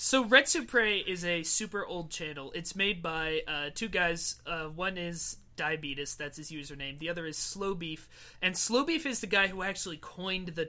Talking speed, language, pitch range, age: 195 wpm, English, 155-195 Hz, 30-49